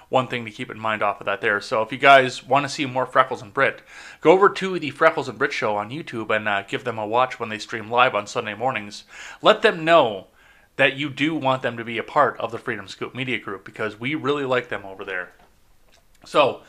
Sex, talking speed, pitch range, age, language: male, 250 wpm, 110-145 Hz, 30-49, English